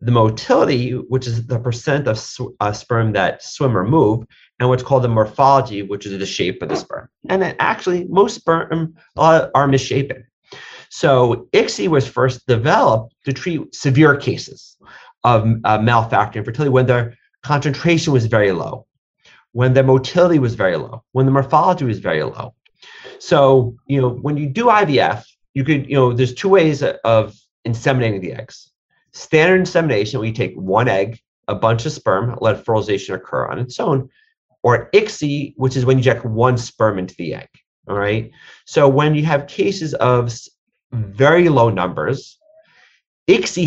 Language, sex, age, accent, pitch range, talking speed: English, male, 30-49, American, 115-145 Hz, 170 wpm